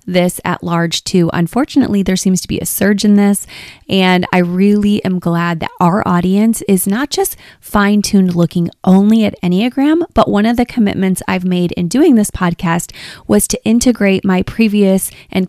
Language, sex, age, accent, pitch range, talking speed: English, female, 20-39, American, 180-240 Hz, 180 wpm